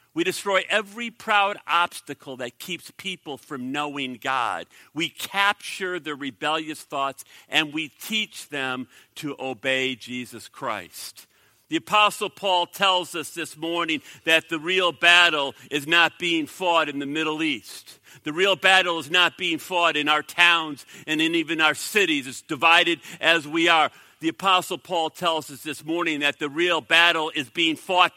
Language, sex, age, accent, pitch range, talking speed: English, male, 50-69, American, 150-195 Hz, 165 wpm